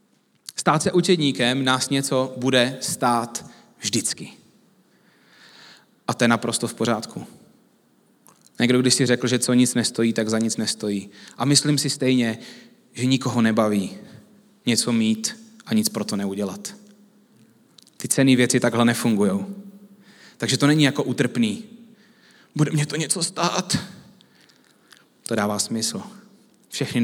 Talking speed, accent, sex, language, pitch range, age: 130 wpm, native, male, Czech, 120-175 Hz, 30-49